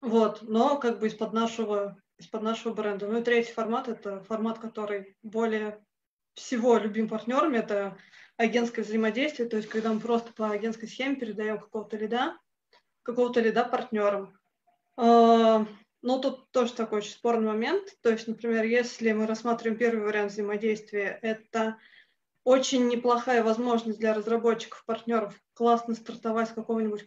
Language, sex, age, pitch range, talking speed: Russian, female, 20-39, 220-240 Hz, 135 wpm